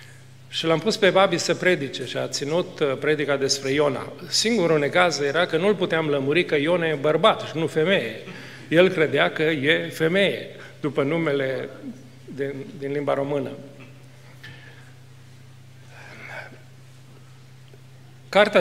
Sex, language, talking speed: male, Romanian, 125 wpm